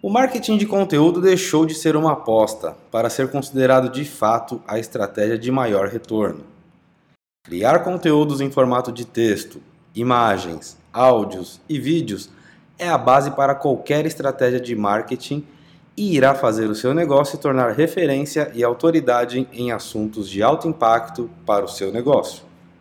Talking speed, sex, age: 150 wpm, male, 20-39